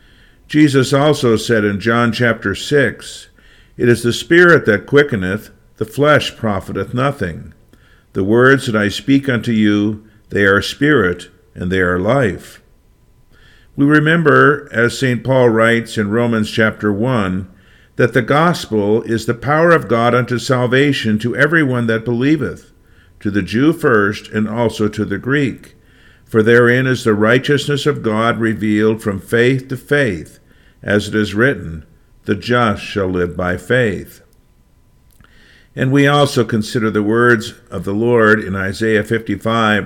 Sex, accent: male, American